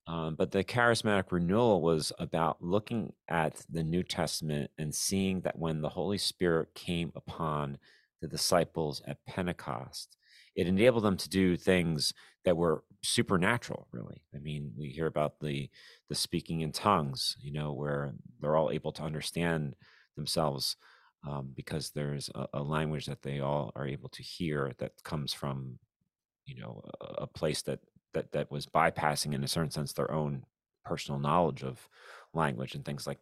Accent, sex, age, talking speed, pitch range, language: American, male, 40-59, 170 wpm, 70-90 Hz, English